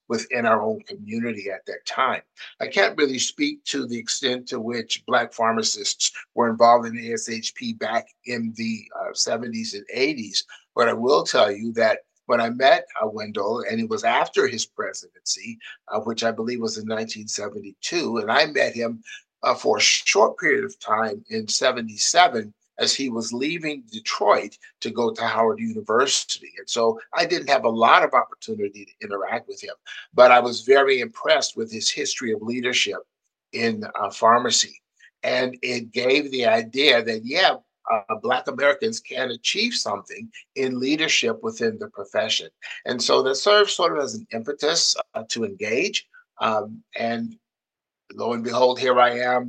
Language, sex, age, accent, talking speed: English, male, 50-69, American, 170 wpm